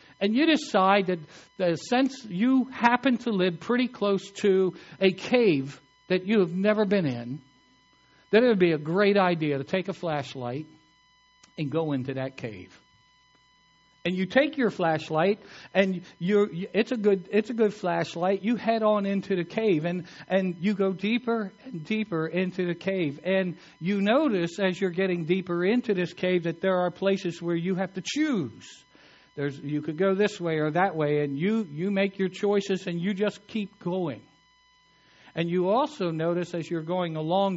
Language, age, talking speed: English, 60-79, 180 wpm